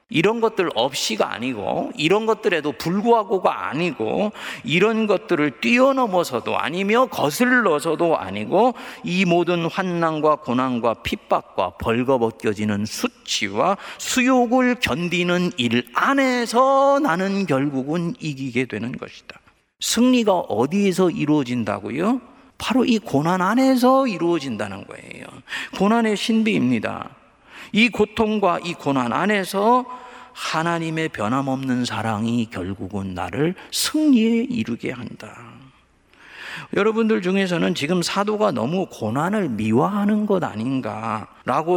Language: Korean